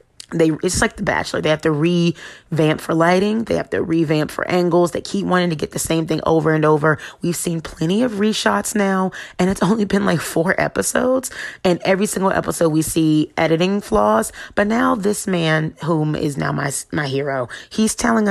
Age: 30-49